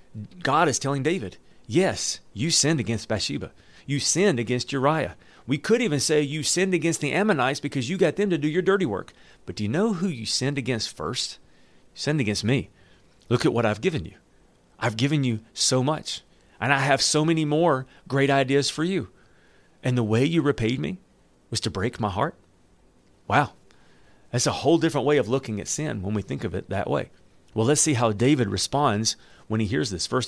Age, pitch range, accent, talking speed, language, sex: 40-59, 105-145 Hz, American, 205 wpm, English, male